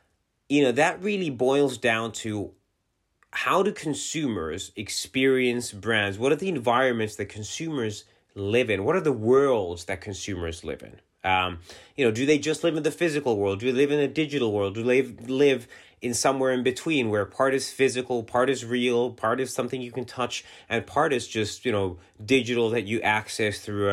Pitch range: 100-135 Hz